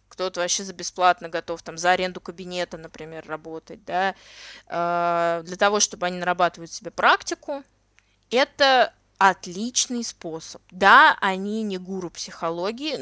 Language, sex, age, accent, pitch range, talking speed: Russian, female, 20-39, native, 180-250 Hz, 125 wpm